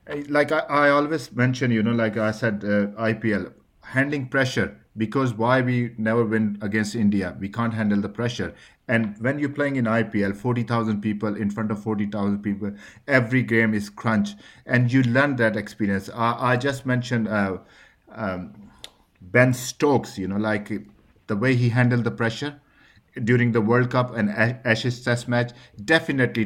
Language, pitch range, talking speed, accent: English, 105-125 Hz, 170 wpm, Indian